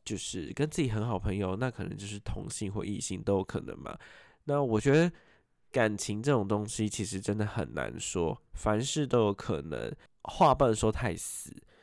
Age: 20-39